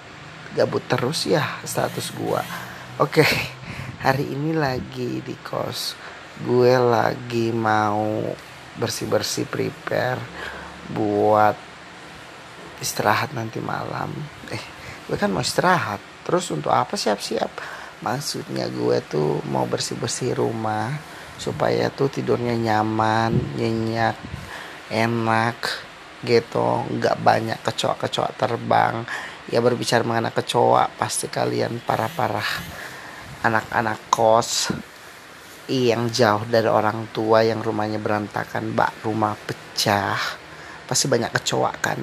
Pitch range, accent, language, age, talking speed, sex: 105-125 Hz, native, Indonesian, 30-49, 105 wpm, male